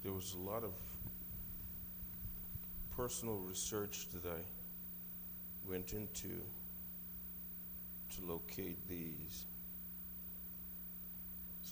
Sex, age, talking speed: male, 50-69, 75 wpm